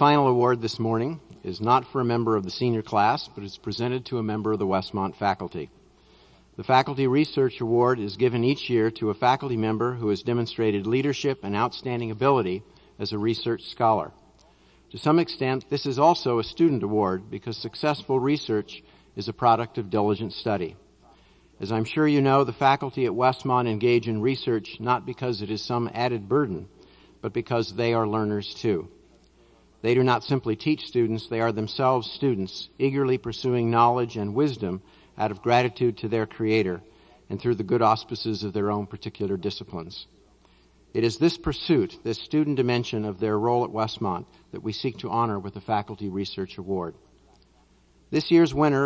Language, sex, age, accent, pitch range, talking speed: English, male, 50-69, American, 110-130 Hz, 180 wpm